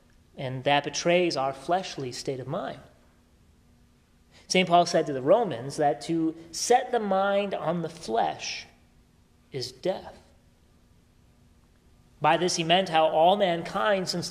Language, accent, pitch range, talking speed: English, American, 125-180 Hz, 135 wpm